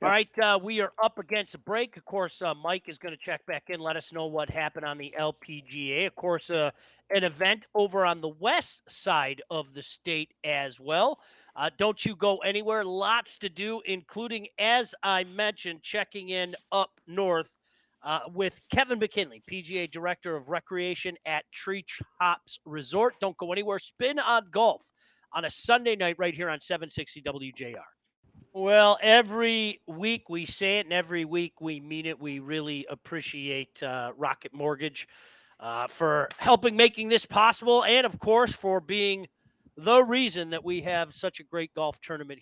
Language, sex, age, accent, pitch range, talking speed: English, male, 40-59, American, 150-200 Hz, 175 wpm